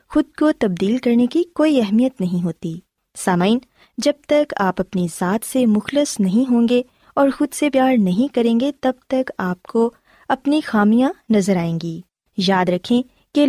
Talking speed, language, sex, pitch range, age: 175 wpm, Urdu, female, 190-270 Hz, 20-39